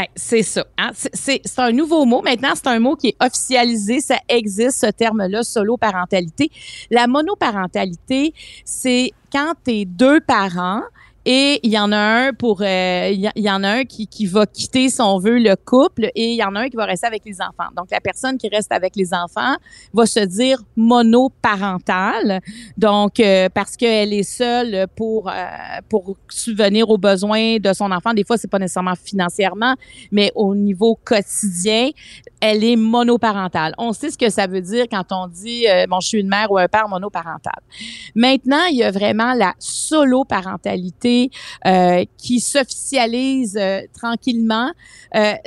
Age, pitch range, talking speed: 40-59, 200-250 Hz, 180 wpm